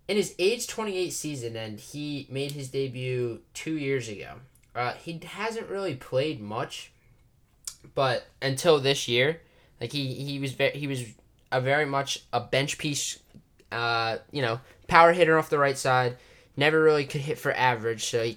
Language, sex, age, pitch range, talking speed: English, male, 10-29, 120-145 Hz, 175 wpm